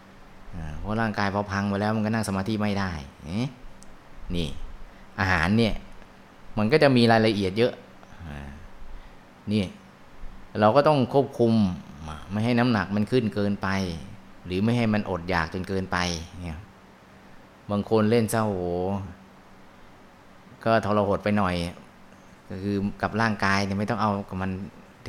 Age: 20-39